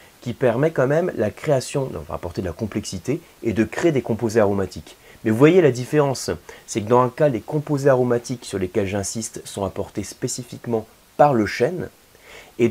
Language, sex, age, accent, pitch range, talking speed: French, male, 30-49, French, 95-130 Hz, 200 wpm